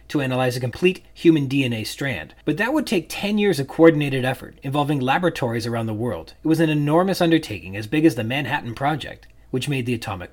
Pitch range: 120-170 Hz